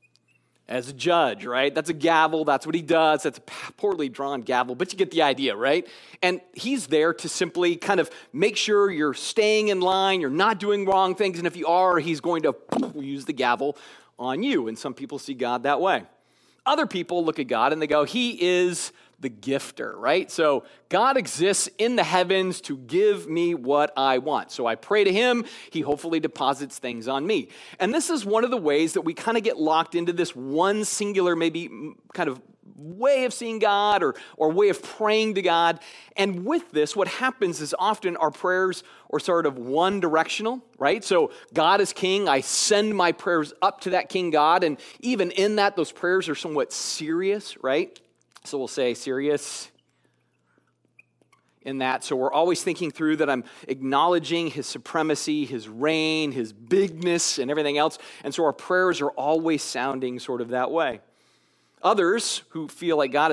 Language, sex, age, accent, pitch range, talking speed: English, male, 40-59, American, 145-200 Hz, 195 wpm